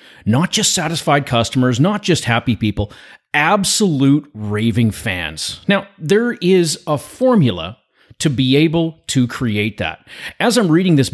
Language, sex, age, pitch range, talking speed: English, male, 30-49, 115-160 Hz, 140 wpm